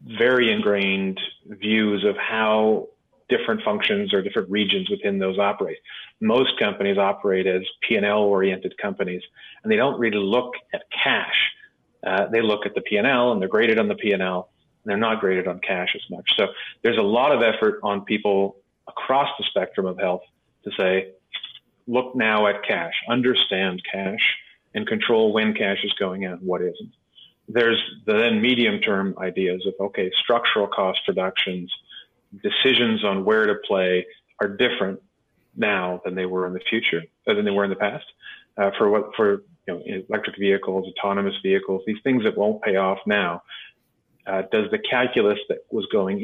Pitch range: 95-125 Hz